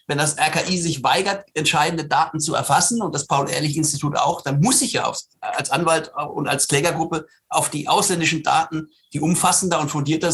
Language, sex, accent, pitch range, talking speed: German, male, German, 140-165 Hz, 180 wpm